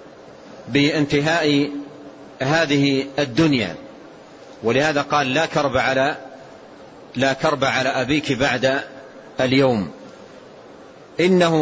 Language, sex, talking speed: Arabic, male, 75 wpm